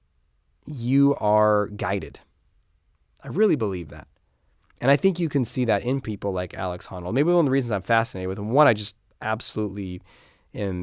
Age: 20-39